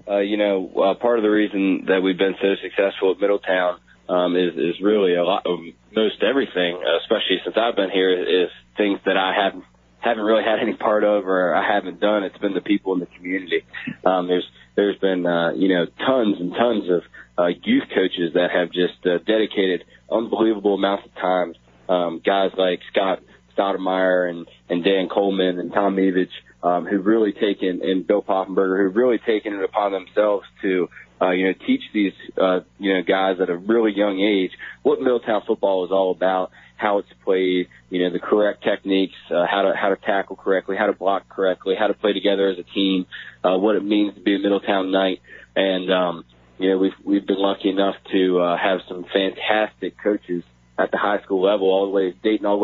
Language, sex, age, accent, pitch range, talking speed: English, male, 20-39, American, 90-100 Hz, 210 wpm